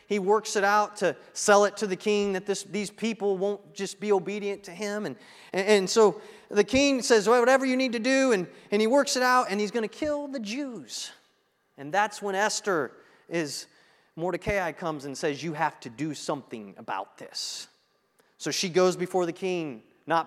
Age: 30-49